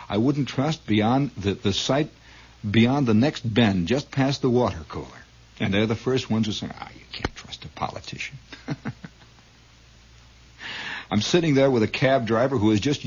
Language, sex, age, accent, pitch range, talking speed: English, male, 60-79, American, 90-125 Hz, 180 wpm